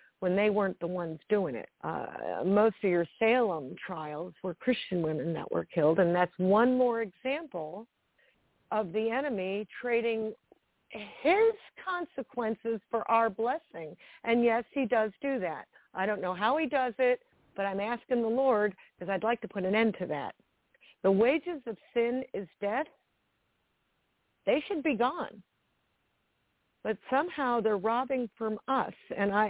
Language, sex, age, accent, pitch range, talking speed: English, female, 50-69, American, 190-235 Hz, 155 wpm